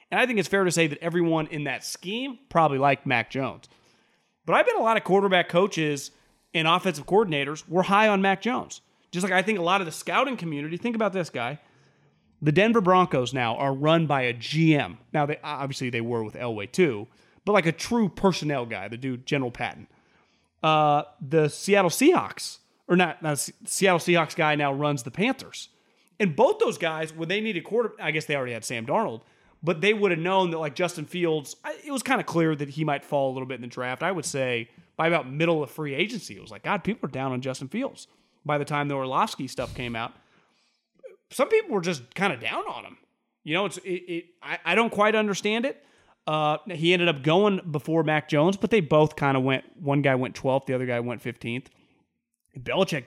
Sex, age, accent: male, 30-49, American